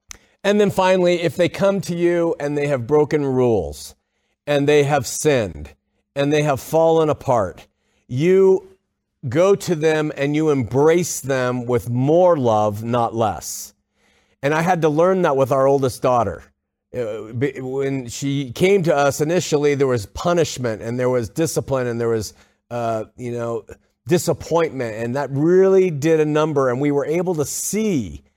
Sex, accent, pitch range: male, American, 125-170 Hz